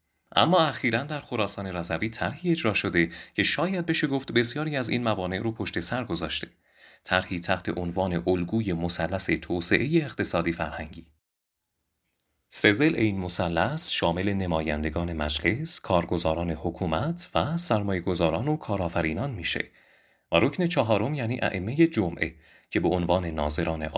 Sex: male